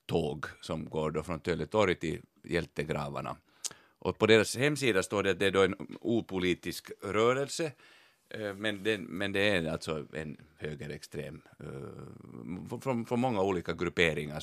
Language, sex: Swedish, male